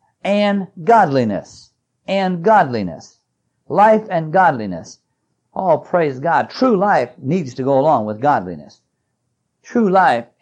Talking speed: 120 wpm